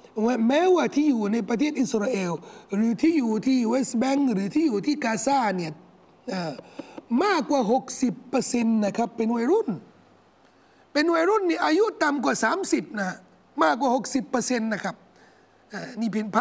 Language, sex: Thai, male